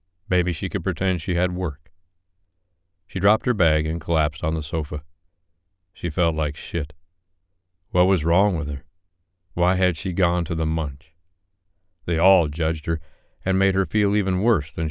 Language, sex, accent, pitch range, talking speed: English, male, American, 80-90 Hz, 175 wpm